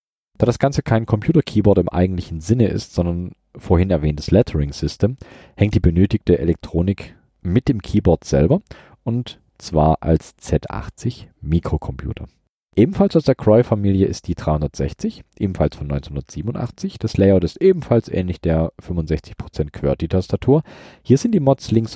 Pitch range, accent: 80-110 Hz, German